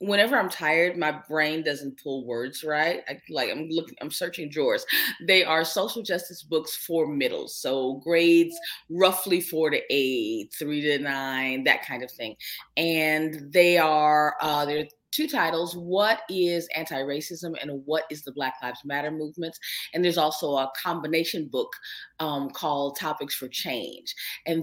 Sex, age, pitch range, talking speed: female, 30-49, 150-195 Hz, 160 wpm